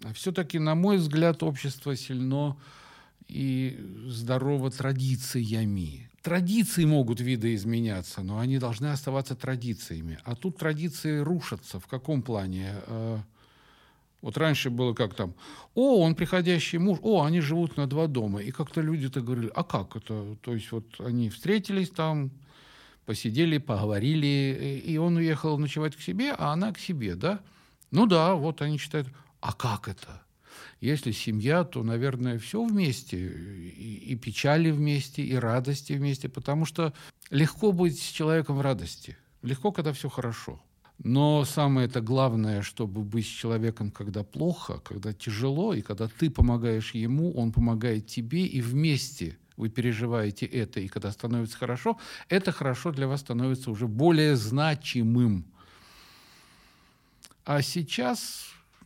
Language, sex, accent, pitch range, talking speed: Russian, male, native, 115-155 Hz, 140 wpm